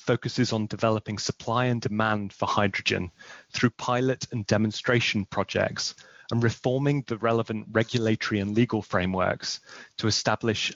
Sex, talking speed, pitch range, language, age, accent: male, 130 wpm, 105-125 Hz, English, 30-49, British